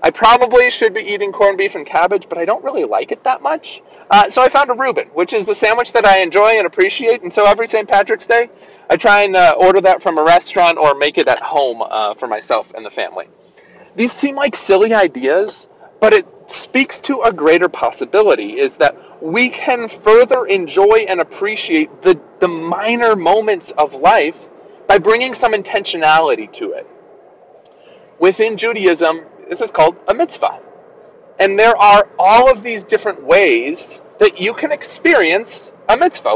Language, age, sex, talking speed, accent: English, 30-49, male, 185 wpm, American